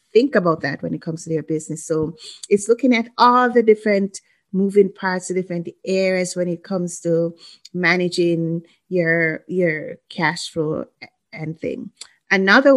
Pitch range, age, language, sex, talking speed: 170-195 Hz, 30-49, English, female, 155 wpm